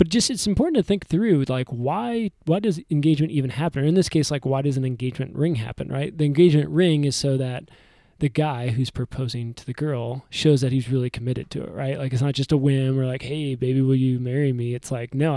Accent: American